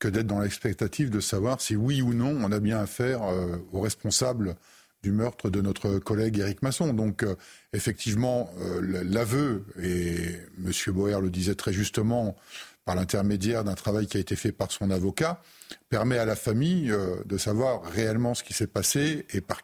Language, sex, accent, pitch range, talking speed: French, male, French, 100-125 Hz, 185 wpm